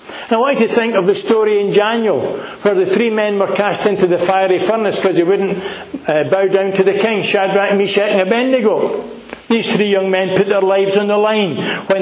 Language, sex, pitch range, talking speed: English, male, 165-205 Hz, 220 wpm